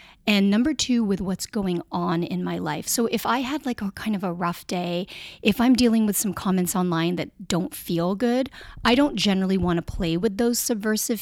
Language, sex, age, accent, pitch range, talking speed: English, female, 30-49, American, 190-255 Hz, 220 wpm